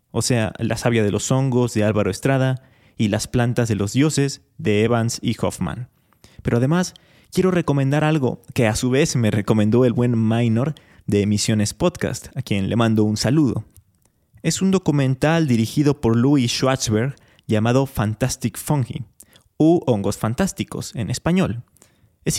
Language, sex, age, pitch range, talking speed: Spanish, male, 30-49, 110-145 Hz, 160 wpm